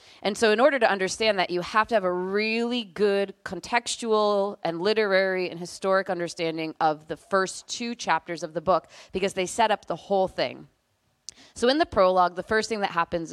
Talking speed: 200 wpm